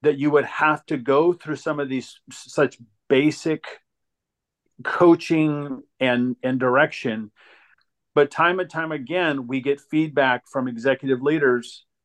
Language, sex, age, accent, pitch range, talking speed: English, male, 40-59, American, 125-155 Hz, 135 wpm